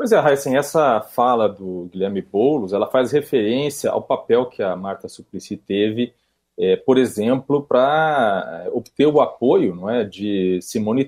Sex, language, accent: male, Portuguese, Brazilian